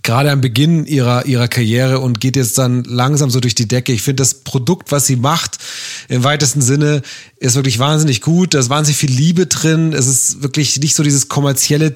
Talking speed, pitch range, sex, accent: 210 wpm, 120-140 Hz, male, German